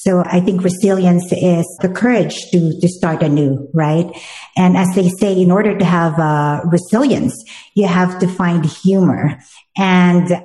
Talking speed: 160 wpm